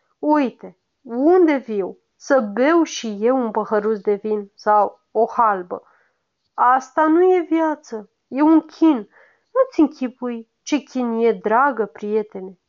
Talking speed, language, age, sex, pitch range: 130 wpm, Romanian, 30-49, female, 215-305 Hz